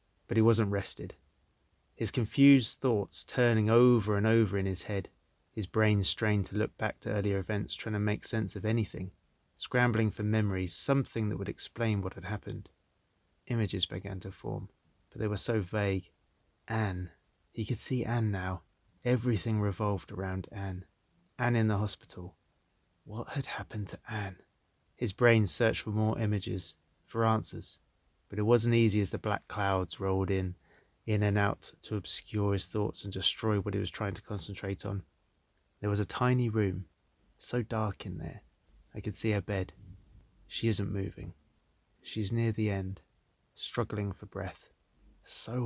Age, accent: 30-49, British